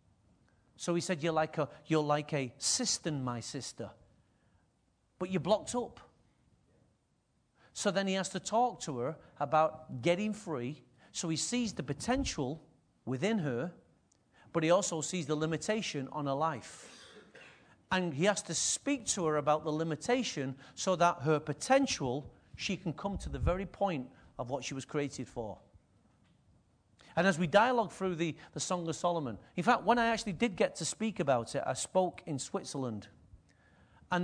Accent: British